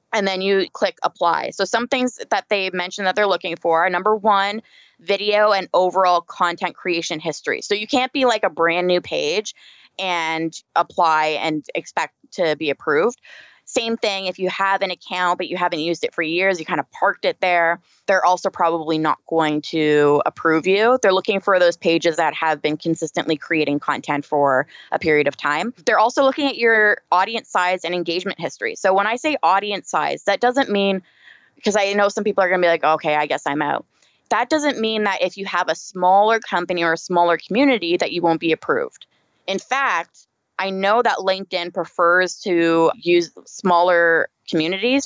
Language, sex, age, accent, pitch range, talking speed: English, female, 20-39, American, 165-205 Hz, 195 wpm